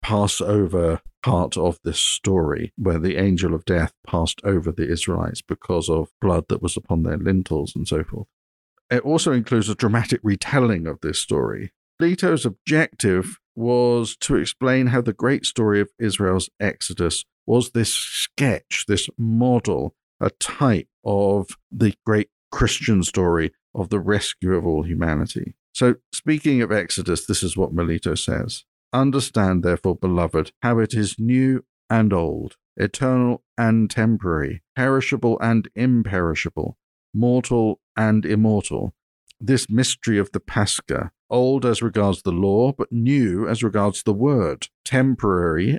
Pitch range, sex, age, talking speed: 95-120 Hz, male, 50-69, 145 wpm